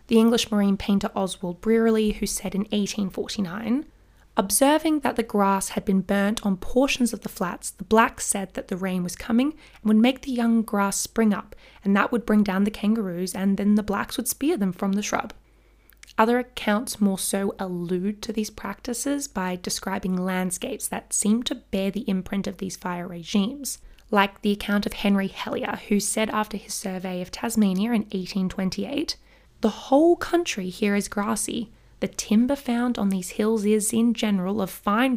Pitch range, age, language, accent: 195-235 Hz, 20-39, English, Australian